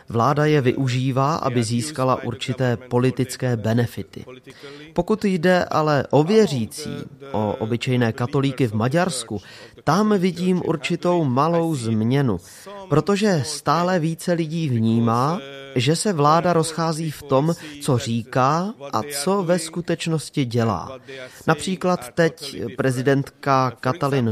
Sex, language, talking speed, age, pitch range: male, Czech, 110 wpm, 30-49, 125-160 Hz